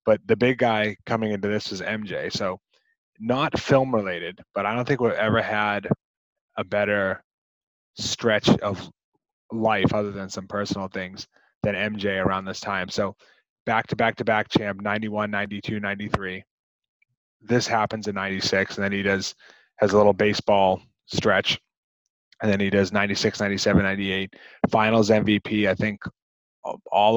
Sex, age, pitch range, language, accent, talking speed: male, 20-39, 95-110 Hz, English, American, 150 wpm